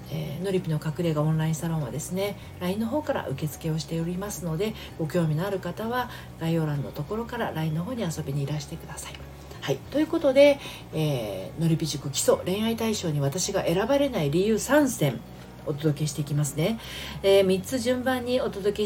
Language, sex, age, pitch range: Japanese, female, 40-59, 145-230 Hz